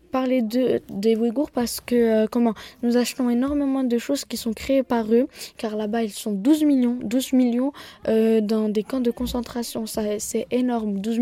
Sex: female